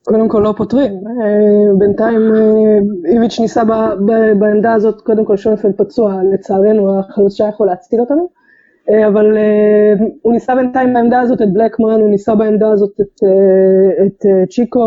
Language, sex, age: Hebrew, female, 20-39